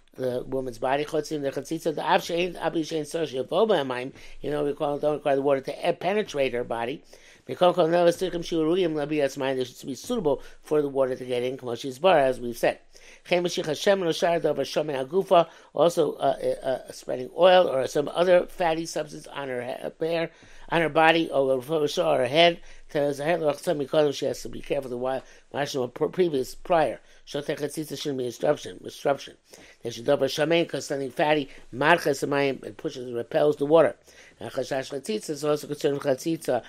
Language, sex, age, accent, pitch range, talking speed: English, male, 60-79, American, 135-165 Hz, 140 wpm